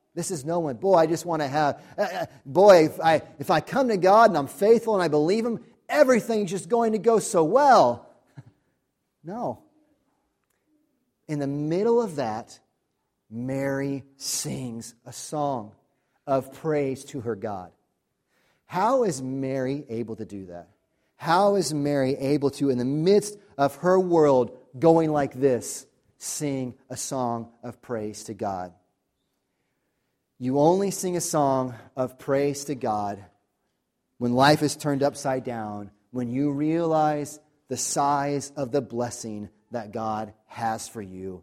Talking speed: 150 wpm